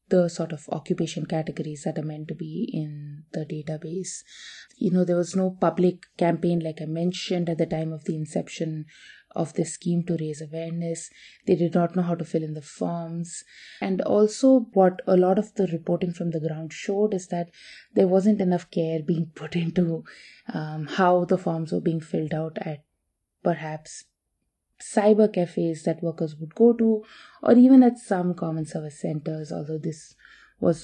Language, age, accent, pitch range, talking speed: English, 20-39, Indian, 160-185 Hz, 180 wpm